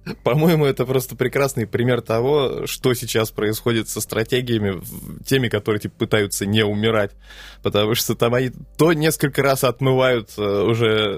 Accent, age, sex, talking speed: native, 20-39, male, 145 wpm